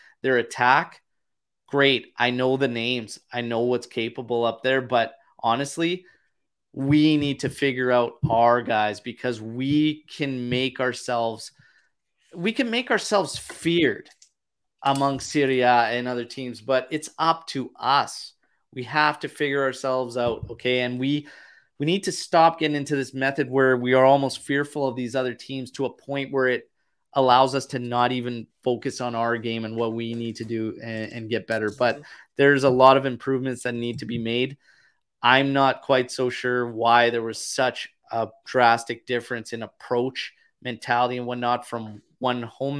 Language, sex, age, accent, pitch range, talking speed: English, male, 30-49, American, 115-135 Hz, 170 wpm